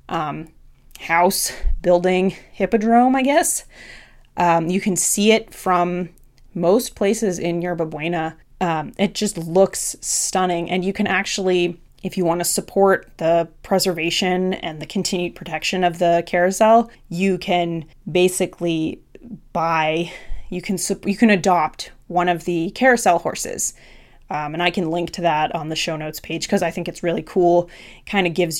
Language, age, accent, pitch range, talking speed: English, 20-39, American, 170-195 Hz, 155 wpm